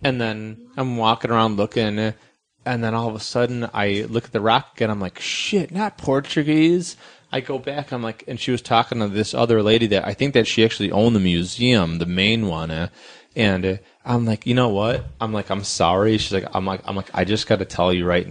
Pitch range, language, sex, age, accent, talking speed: 95-120 Hz, English, male, 30-49, American, 235 wpm